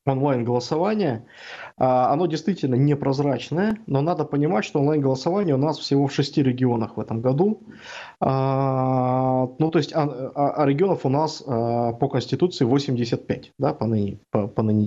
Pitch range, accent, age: 125-155 Hz, native, 20-39